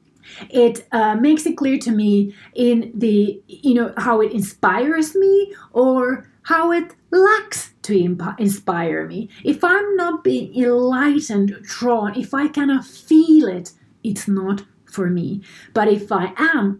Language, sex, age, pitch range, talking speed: English, female, 30-49, 200-270 Hz, 145 wpm